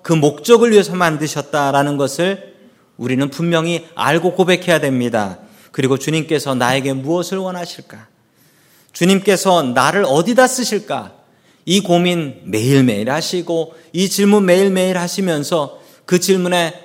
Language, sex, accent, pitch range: Korean, male, native, 135-190 Hz